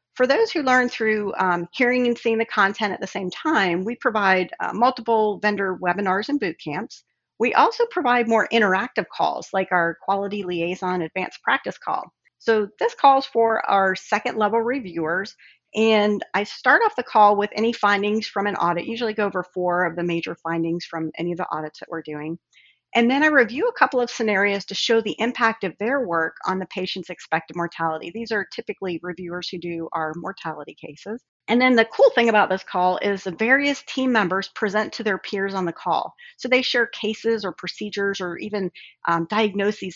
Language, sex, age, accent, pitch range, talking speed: English, female, 40-59, American, 180-225 Hz, 200 wpm